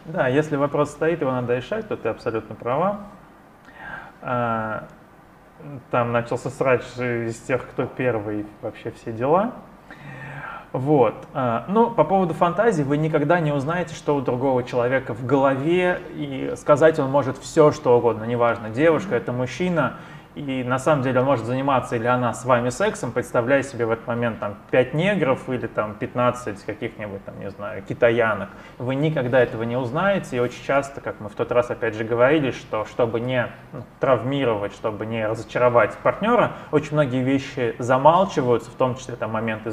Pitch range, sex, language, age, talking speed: 120-155 Hz, male, Russian, 20-39, 165 wpm